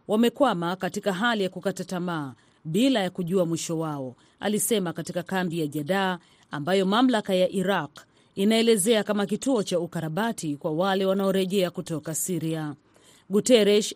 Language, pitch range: Swahili, 165-210 Hz